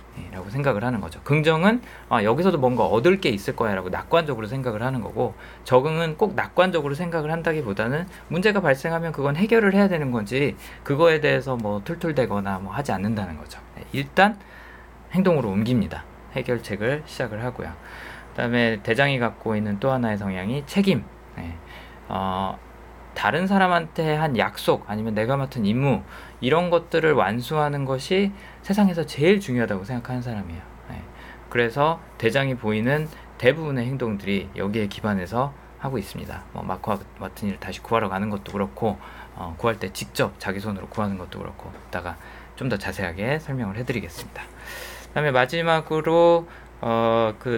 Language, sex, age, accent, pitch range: Korean, male, 20-39, native, 105-165 Hz